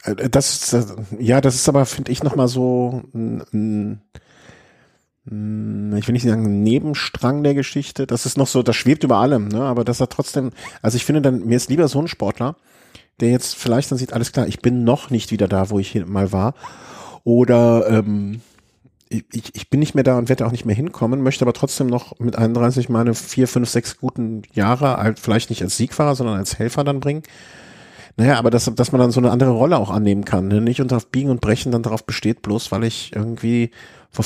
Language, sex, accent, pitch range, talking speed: German, male, German, 110-130 Hz, 220 wpm